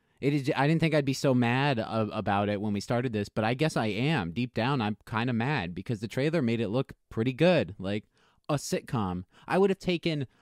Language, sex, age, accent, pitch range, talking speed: English, male, 20-39, American, 115-160 Hz, 240 wpm